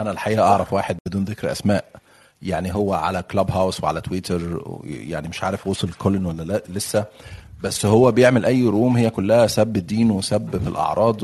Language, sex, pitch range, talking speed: Arabic, male, 100-130 Hz, 175 wpm